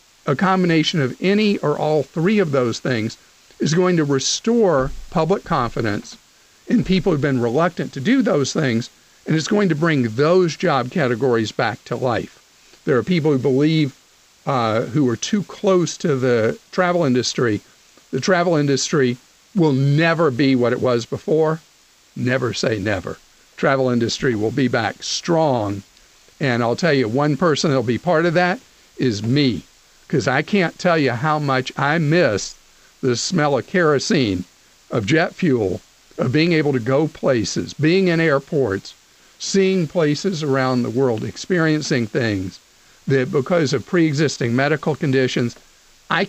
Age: 50-69